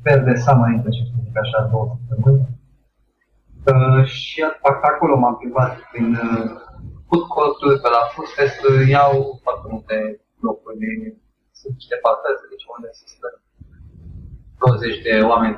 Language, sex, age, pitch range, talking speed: Romanian, male, 30-49, 120-145 Hz, 135 wpm